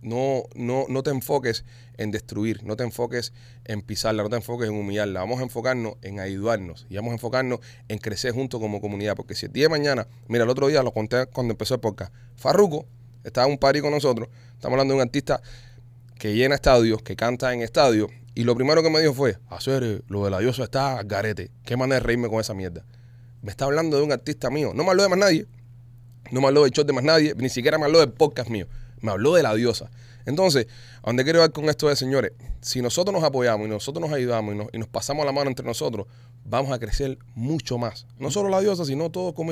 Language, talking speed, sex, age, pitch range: Spanish, 240 wpm, male, 30-49, 115-140 Hz